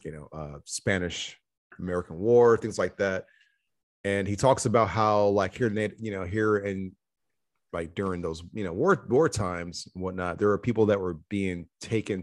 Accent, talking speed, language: American, 180 wpm, English